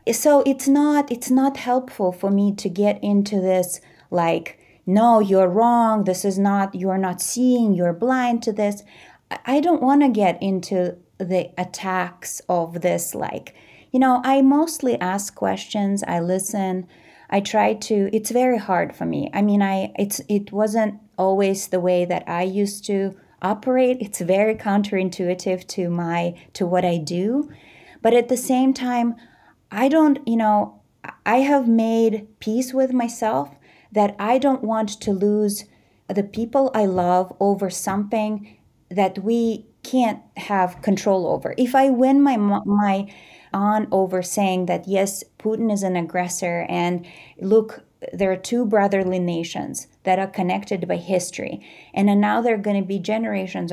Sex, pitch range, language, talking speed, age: female, 185-230 Hz, English, 160 wpm, 30-49